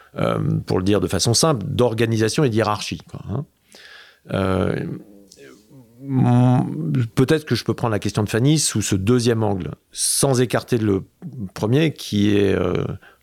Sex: male